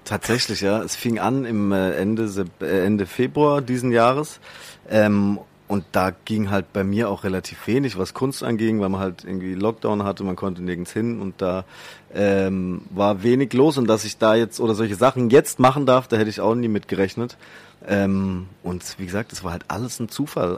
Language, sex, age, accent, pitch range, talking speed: German, male, 30-49, German, 95-115 Hz, 200 wpm